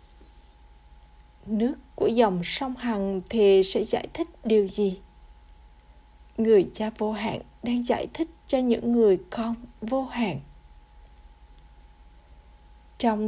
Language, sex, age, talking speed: Vietnamese, female, 20-39, 115 wpm